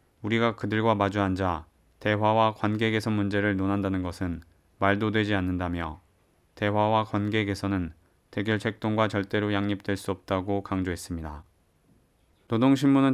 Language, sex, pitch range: Korean, male, 95-115 Hz